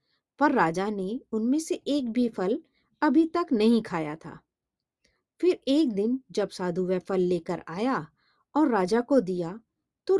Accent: native